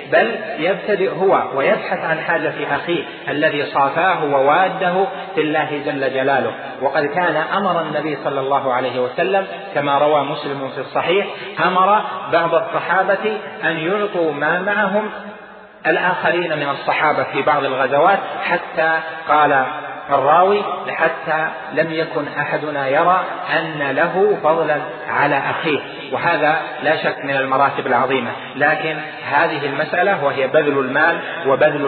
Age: 40-59